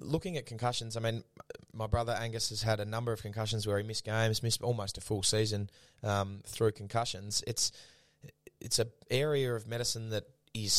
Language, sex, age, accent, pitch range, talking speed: English, male, 20-39, Australian, 100-115 Hz, 190 wpm